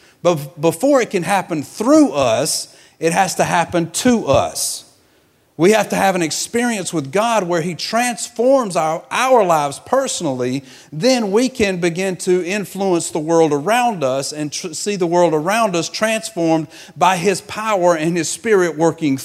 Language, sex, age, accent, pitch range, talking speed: English, male, 50-69, American, 160-210 Hz, 165 wpm